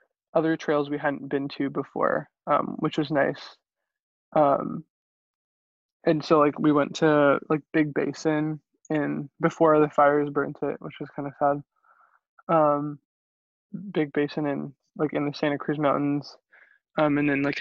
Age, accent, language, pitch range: 20-39, American, English, 145-155 Hz